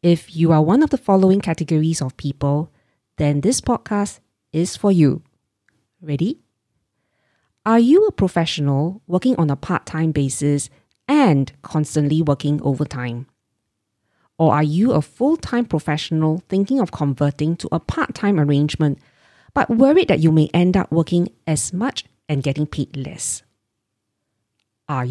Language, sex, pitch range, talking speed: English, female, 140-200 Hz, 140 wpm